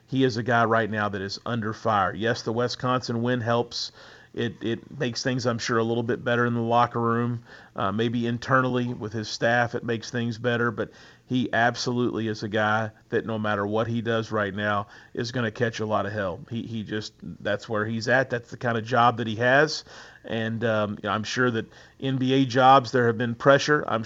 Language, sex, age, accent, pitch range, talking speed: English, male, 40-59, American, 110-125 Hz, 220 wpm